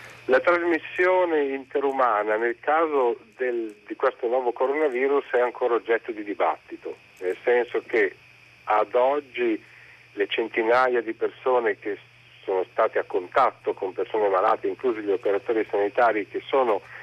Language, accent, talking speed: Italian, native, 130 wpm